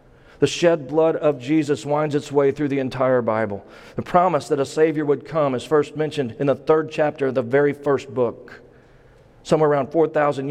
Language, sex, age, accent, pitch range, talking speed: English, male, 40-59, American, 130-155 Hz, 195 wpm